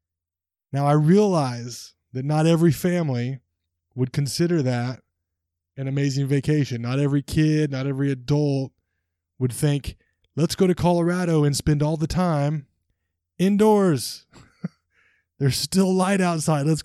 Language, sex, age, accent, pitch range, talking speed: English, male, 20-39, American, 115-160 Hz, 130 wpm